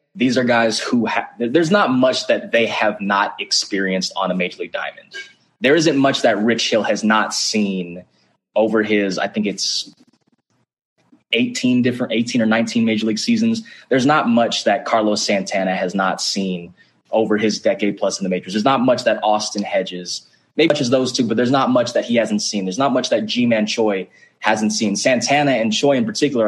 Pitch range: 105-135 Hz